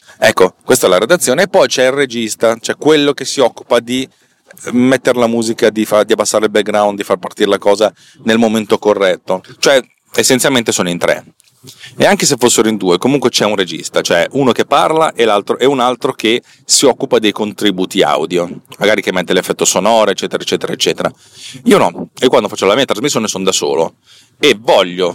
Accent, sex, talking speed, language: native, male, 200 wpm, Italian